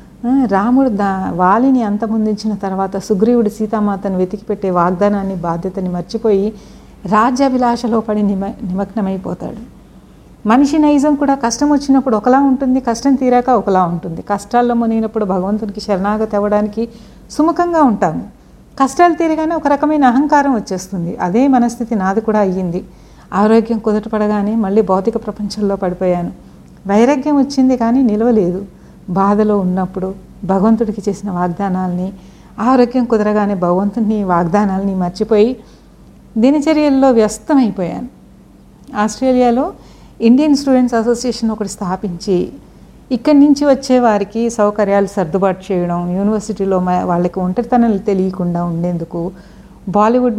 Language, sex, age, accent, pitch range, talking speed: Telugu, female, 60-79, native, 190-245 Hz, 100 wpm